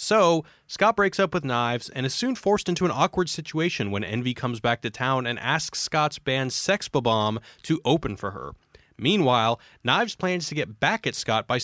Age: 30-49